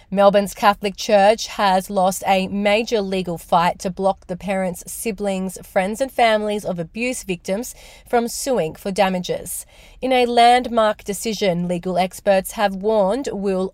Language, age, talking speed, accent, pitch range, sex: English, 30-49, 145 wpm, Australian, 180-220 Hz, female